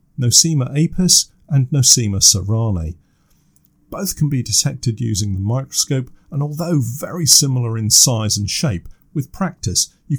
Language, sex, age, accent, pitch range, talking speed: English, male, 50-69, British, 100-140 Hz, 135 wpm